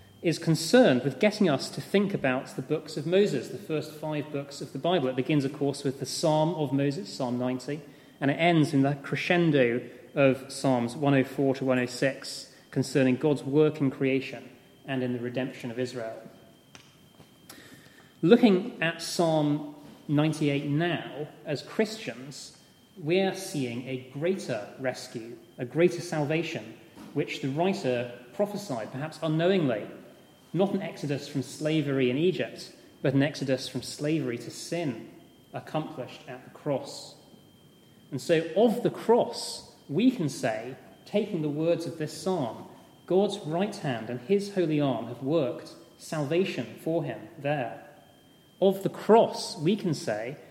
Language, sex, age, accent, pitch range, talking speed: English, male, 30-49, British, 135-175 Hz, 150 wpm